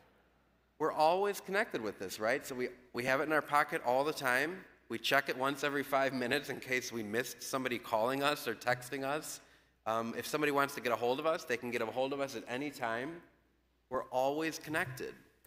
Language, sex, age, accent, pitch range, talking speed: English, male, 30-49, American, 115-140 Hz, 220 wpm